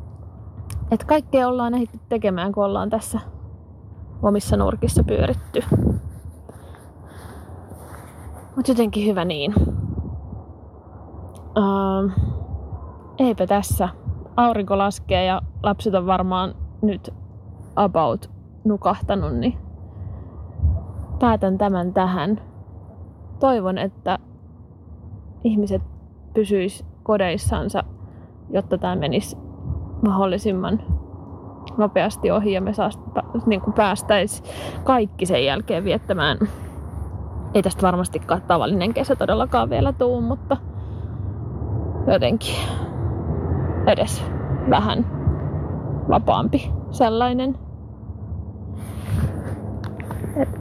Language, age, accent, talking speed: Finnish, 20-39, native, 75 wpm